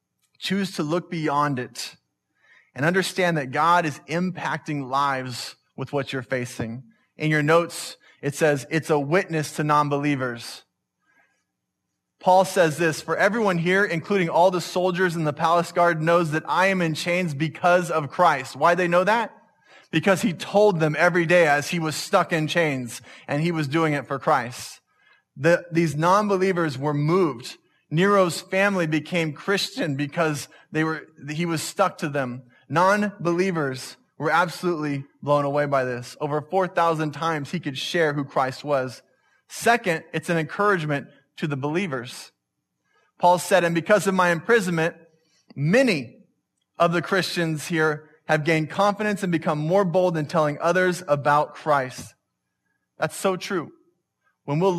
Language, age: English, 20-39